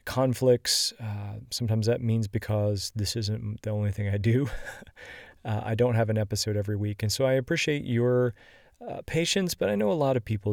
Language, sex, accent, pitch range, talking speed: English, male, American, 105-120 Hz, 200 wpm